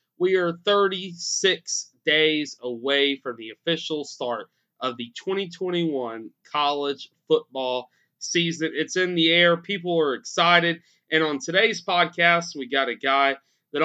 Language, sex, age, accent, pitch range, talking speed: English, male, 30-49, American, 140-180 Hz, 135 wpm